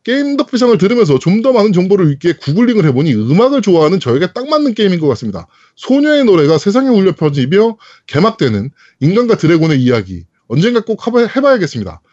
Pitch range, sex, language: 155-235 Hz, male, Korean